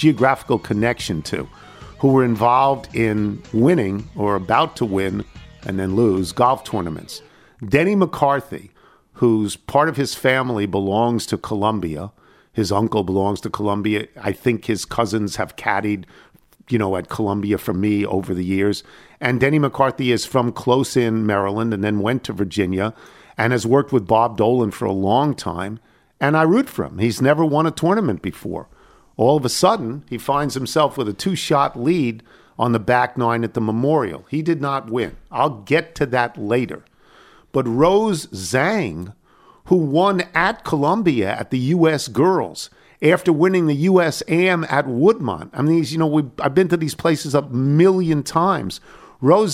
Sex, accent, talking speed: male, American, 170 wpm